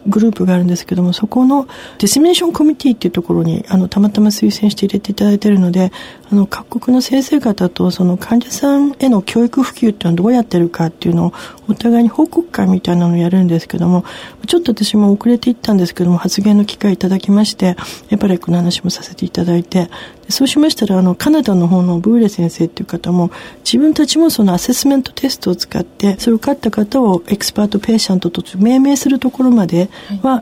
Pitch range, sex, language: 185-255 Hz, female, Japanese